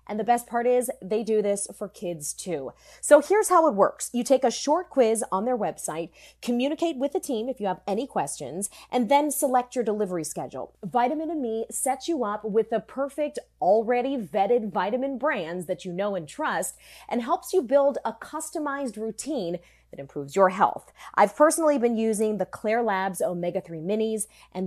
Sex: female